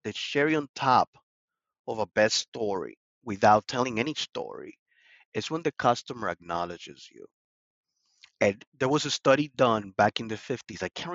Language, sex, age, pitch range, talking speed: English, male, 30-49, 110-155 Hz, 160 wpm